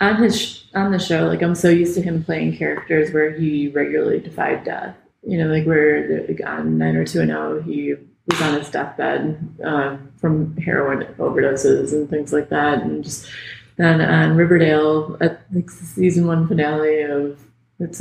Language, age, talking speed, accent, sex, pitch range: English, 20-39, 185 wpm, American, female, 150-175 Hz